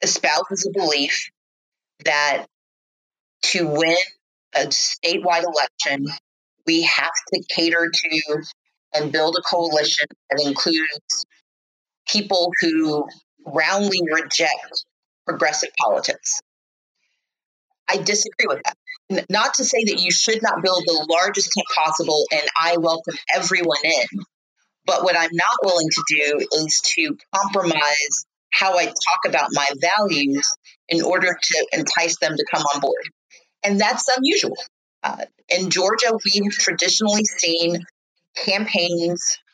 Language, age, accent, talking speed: English, 40-59, American, 125 wpm